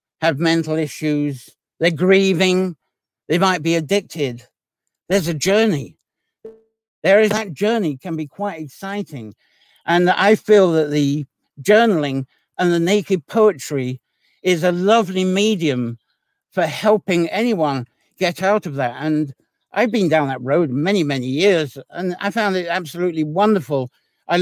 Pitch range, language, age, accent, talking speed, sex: 140-190 Hz, English, 60-79, British, 140 wpm, male